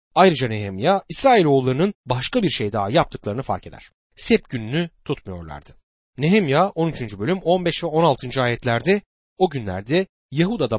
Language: Turkish